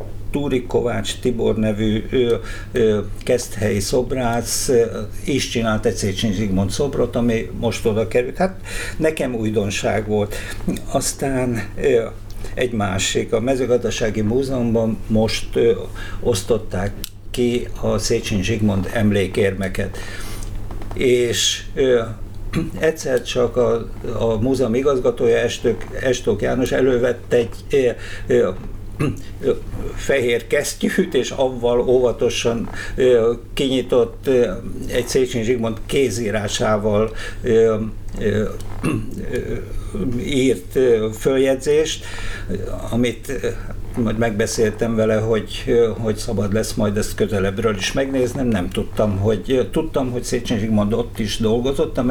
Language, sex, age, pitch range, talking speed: Hungarian, male, 50-69, 100-120 Hz, 90 wpm